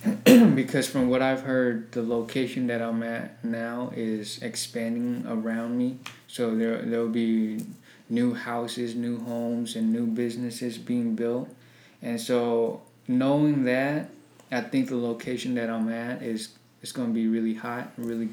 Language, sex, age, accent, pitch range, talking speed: English, male, 20-39, American, 115-130 Hz, 155 wpm